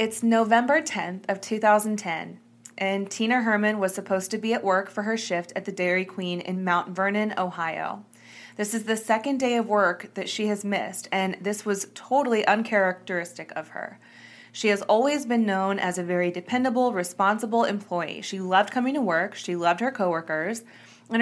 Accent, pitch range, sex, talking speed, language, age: American, 185-225 Hz, female, 180 wpm, English, 20-39